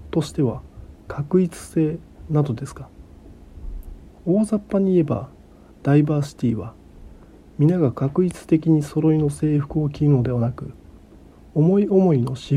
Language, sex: Japanese, male